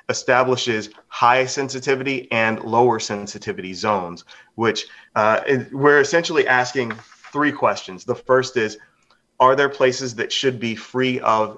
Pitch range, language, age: 100-125 Hz, English, 30-49